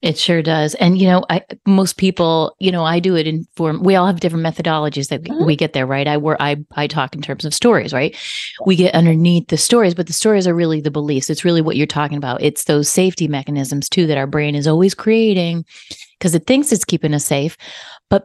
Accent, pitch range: American, 150-205 Hz